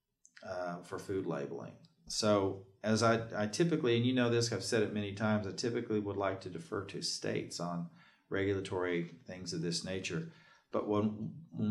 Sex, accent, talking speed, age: male, American, 180 wpm, 40-59